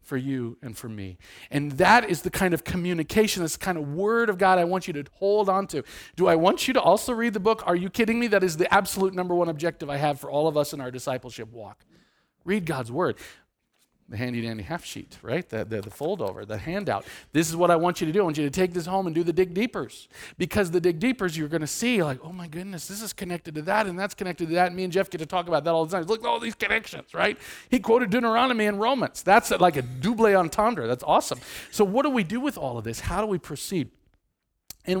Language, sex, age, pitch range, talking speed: English, male, 40-59, 135-195 Hz, 270 wpm